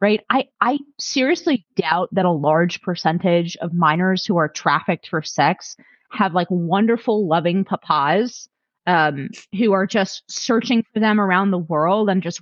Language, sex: English, female